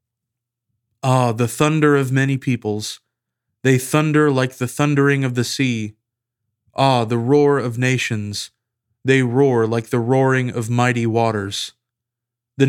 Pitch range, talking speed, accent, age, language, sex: 115-130 Hz, 130 wpm, American, 20-39, English, male